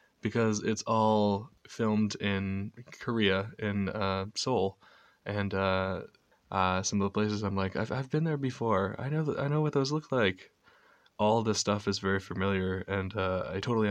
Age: 20-39